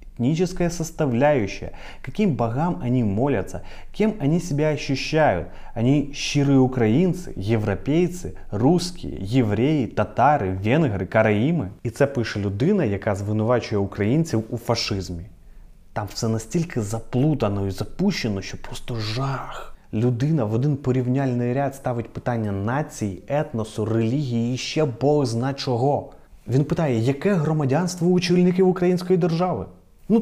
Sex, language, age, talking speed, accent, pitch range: male, Ukrainian, 30-49, 120 wpm, native, 110-180 Hz